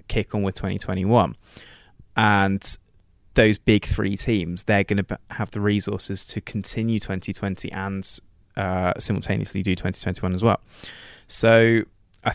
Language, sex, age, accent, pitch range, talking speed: English, male, 20-39, British, 95-110 Hz, 130 wpm